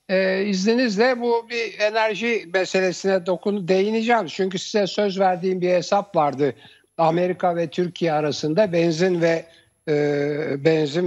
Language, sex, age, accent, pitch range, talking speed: Turkish, male, 60-79, native, 150-195 Hz, 125 wpm